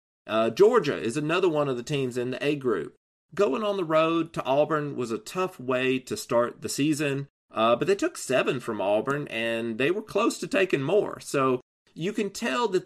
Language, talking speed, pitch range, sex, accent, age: English, 210 wpm, 130-185 Hz, male, American, 30-49